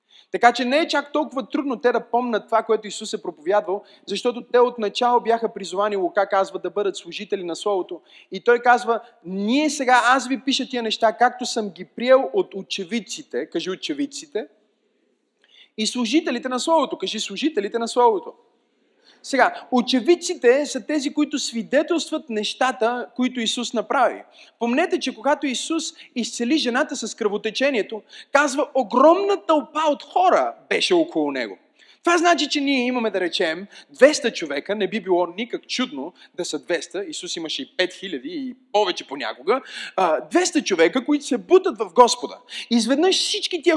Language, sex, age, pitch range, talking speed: Bulgarian, male, 30-49, 210-305 Hz, 160 wpm